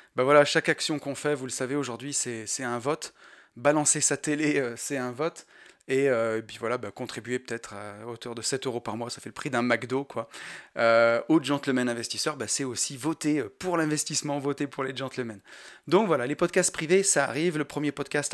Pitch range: 125-155 Hz